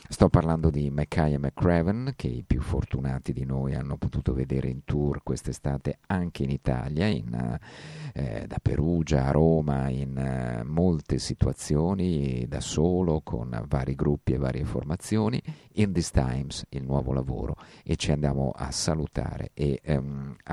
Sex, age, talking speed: male, 50-69, 150 wpm